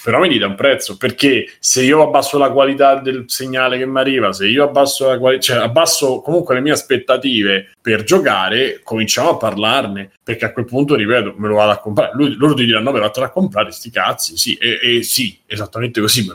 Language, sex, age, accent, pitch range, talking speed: Italian, male, 30-49, native, 110-135 Hz, 225 wpm